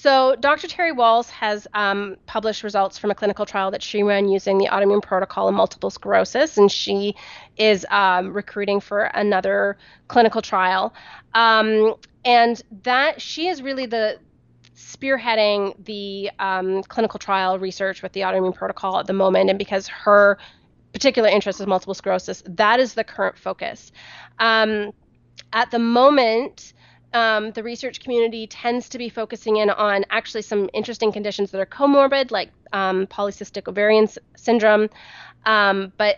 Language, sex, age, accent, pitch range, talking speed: English, female, 30-49, American, 195-225 Hz, 155 wpm